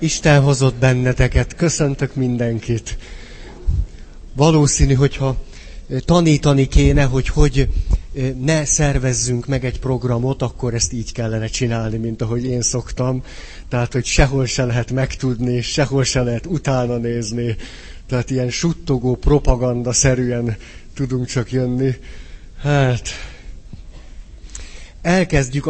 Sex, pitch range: male, 115-140 Hz